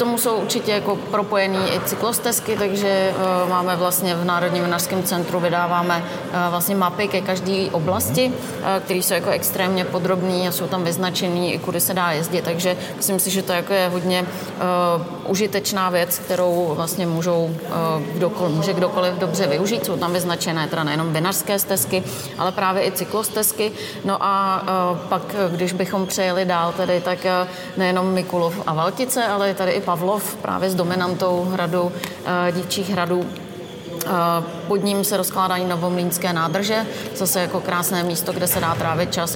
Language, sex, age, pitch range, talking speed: Slovak, female, 30-49, 175-190 Hz, 160 wpm